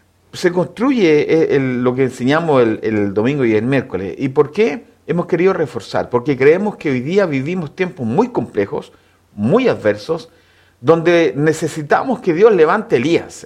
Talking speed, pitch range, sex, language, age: 160 wpm, 120-195 Hz, male, Spanish, 50-69